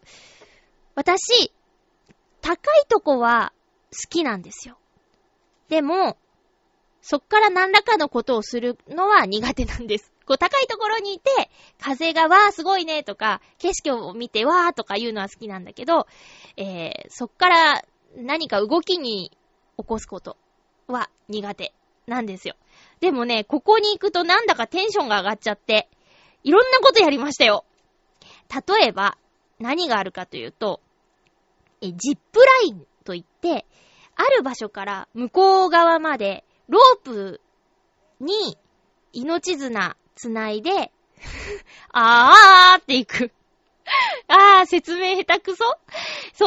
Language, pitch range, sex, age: Japanese, 230-380 Hz, female, 20-39